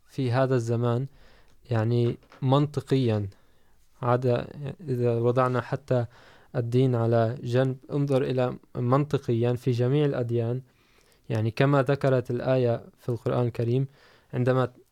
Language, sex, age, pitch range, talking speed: Urdu, male, 20-39, 120-135 Hz, 100 wpm